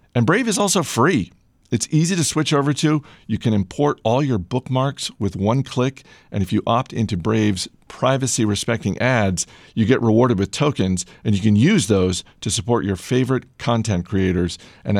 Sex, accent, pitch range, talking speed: male, American, 95-120 Hz, 180 wpm